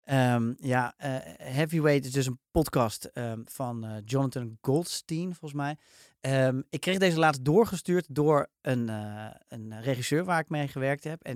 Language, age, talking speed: Dutch, 30-49, 155 wpm